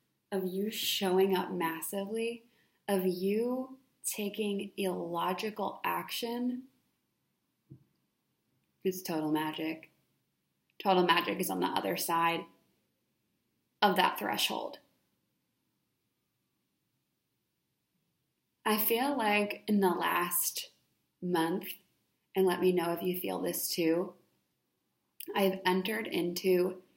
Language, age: English, 20-39